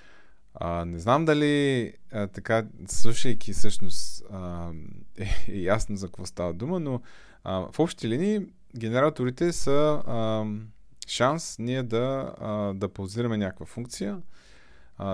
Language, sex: Bulgarian, male